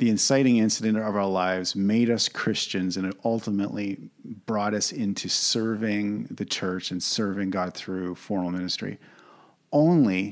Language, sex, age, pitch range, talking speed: English, male, 40-59, 95-115 Hz, 145 wpm